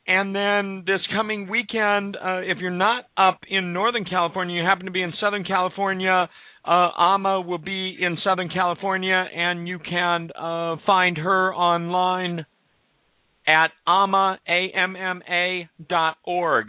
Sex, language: male, English